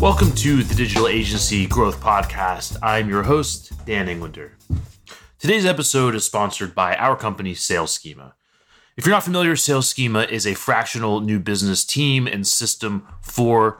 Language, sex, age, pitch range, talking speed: English, male, 30-49, 90-110 Hz, 155 wpm